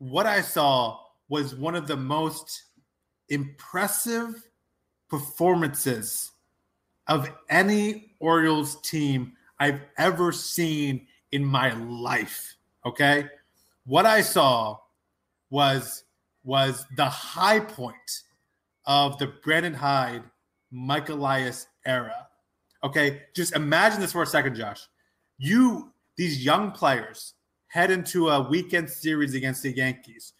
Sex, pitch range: male, 135-165 Hz